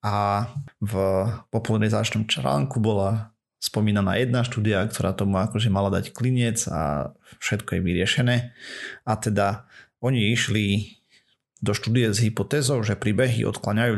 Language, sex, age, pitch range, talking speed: Slovak, male, 30-49, 100-115 Hz, 125 wpm